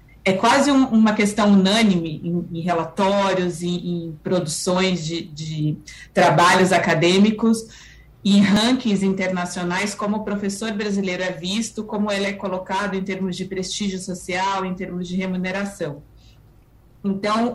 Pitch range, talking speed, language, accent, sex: 180-220 Hz, 130 wpm, Portuguese, Brazilian, female